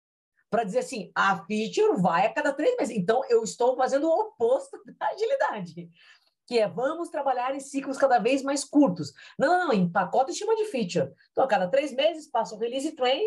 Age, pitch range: 40-59, 180-255 Hz